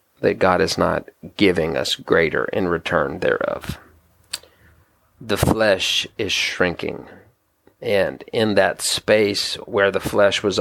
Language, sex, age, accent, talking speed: English, male, 40-59, American, 125 wpm